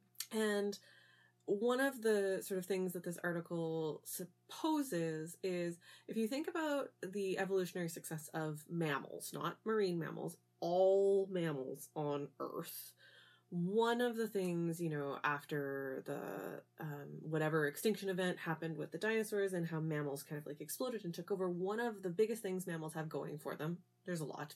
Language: English